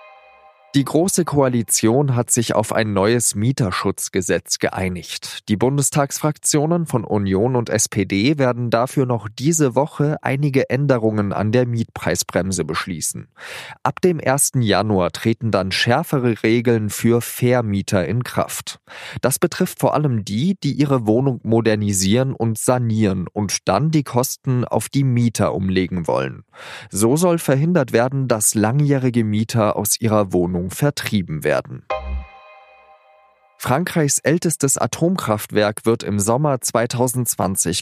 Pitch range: 105-135 Hz